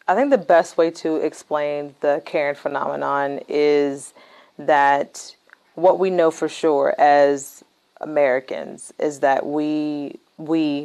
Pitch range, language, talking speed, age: 145-160 Hz, English, 125 wpm, 40-59